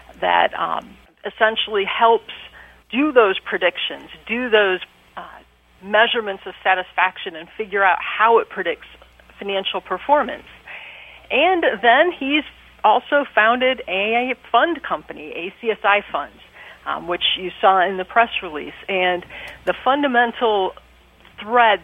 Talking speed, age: 120 wpm, 40-59